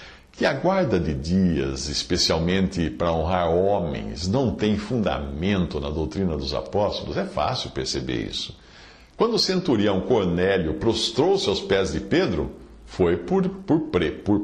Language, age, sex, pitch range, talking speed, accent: Portuguese, 60-79, male, 80-110 Hz, 135 wpm, Brazilian